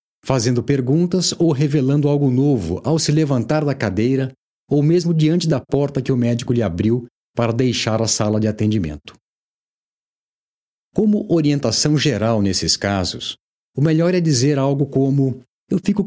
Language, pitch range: Portuguese, 115-150 Hz